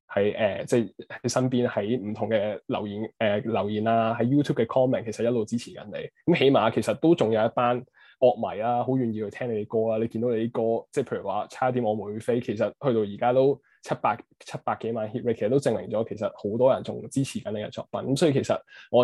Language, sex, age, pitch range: Chinese, male, 20-39, 110-130 Hz